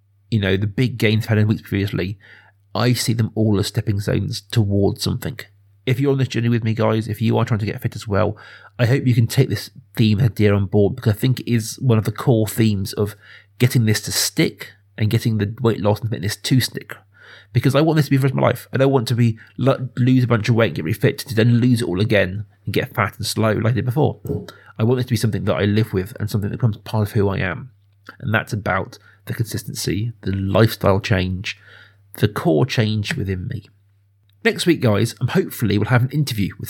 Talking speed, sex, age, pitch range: 250 wpm, male, 30-49, 105-125 Hz